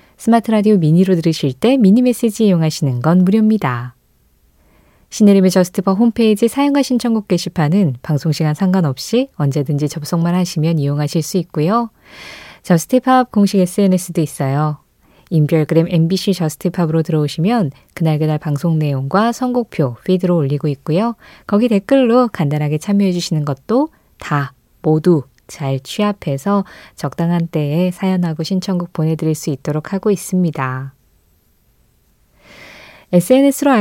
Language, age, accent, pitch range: Korean, 20-39, native, 155-220 Hz